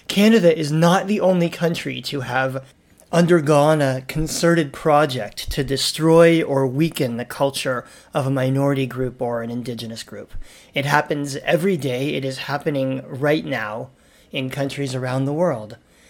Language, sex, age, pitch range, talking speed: English, male, 30-49, 135-170 Hz, 150 wpm